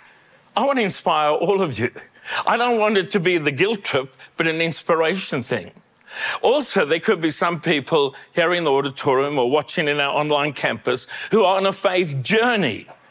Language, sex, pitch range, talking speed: English, male, 150-200 Hz, 190 wpm